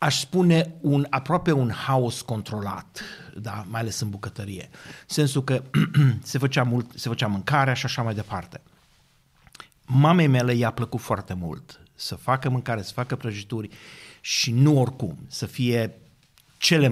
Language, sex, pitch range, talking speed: Romanian, male, 105-140 Hz, 145 wpm